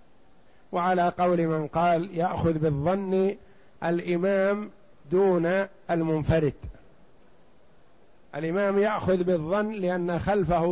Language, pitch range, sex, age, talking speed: Arabic, 160-200 Hz, male, 50-69, 80 wpm